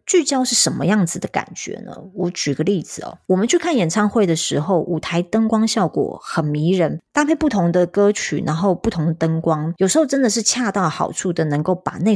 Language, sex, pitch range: Chinese, female, 165-220 Hz